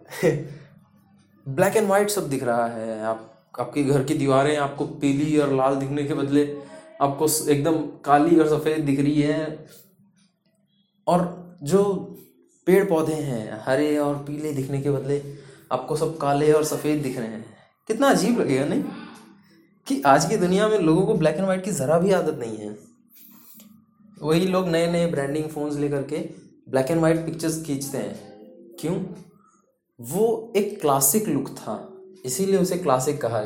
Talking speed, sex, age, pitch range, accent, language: 160 wpm, male, 20-39, 140-190 Hz, native, Hindi